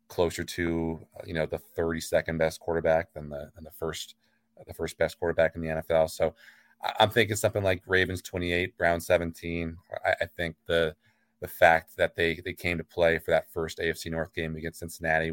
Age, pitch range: 30-49, 80-90 Hz